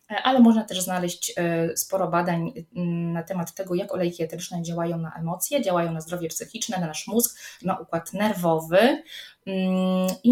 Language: Polish